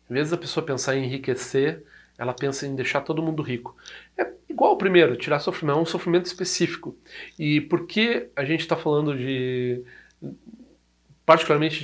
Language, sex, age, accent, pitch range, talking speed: Portuguese, male, 40-59, Brazilian, 120-140 Hz, 165 wpm